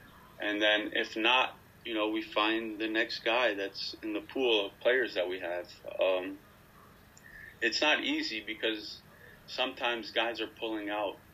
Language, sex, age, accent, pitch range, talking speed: English, male, 30-49, American, 105-115 Hz, 160 wpm